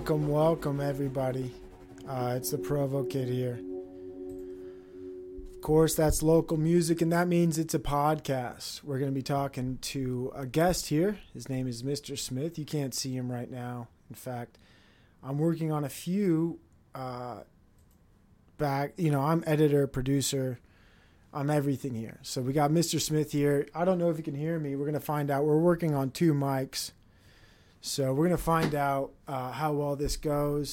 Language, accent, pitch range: English, American, 125-155 Hz